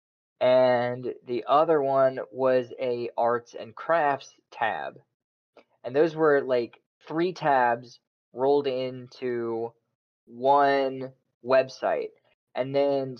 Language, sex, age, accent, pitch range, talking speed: English, male, 20-39, American, 120-145 Hz, 100 wpm